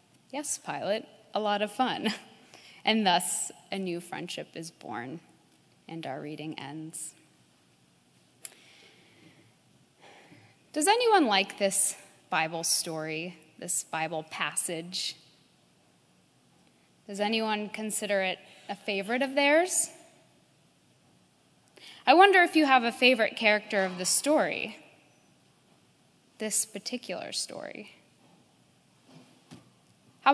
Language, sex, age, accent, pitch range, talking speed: English, female, 10-29, American, 175-295 Hz, 95 wpm